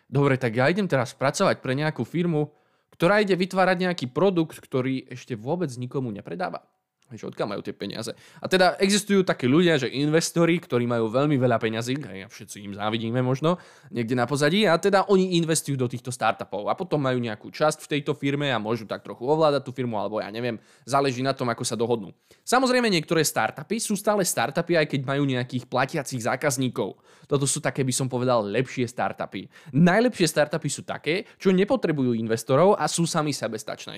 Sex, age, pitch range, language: male, 10-29, 125-170 Hz, Slovak